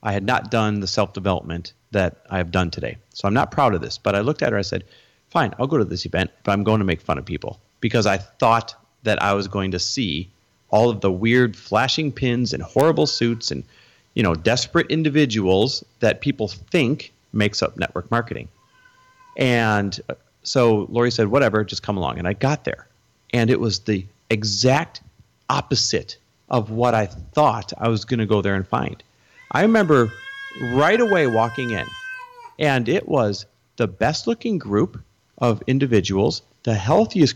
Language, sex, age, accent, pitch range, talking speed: English, male, 40-59, American, 100-135 Hz, 185 wpm